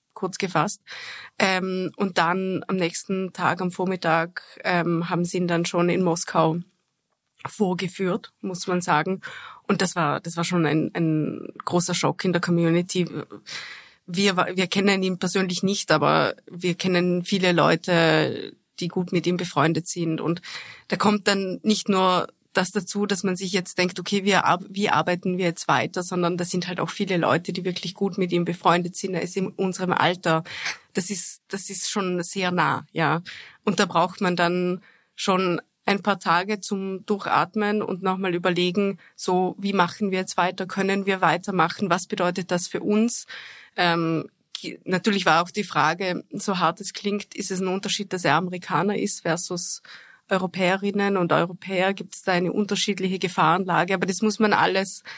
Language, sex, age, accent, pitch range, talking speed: German, female, 30-49, German, 175-195 Hz, 170 wpm